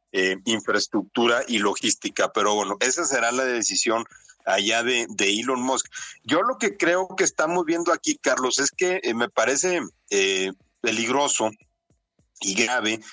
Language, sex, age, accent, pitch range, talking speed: Spanish, male, 50-69, Mexican, 115-165 Hz, 150 wpm